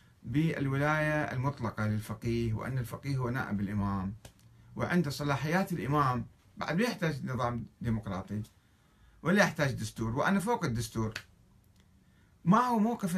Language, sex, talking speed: Arabic, male, 110 wpm